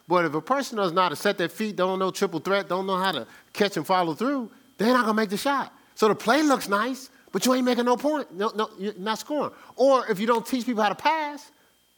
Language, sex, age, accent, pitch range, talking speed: English, male, 40-59, American, 150-230 Hz, 260 wpm